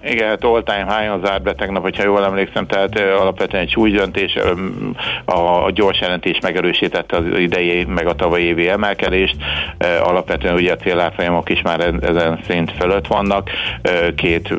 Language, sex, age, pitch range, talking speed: Hungarian, male, 60-79, 80-90 Hz, 140 wpm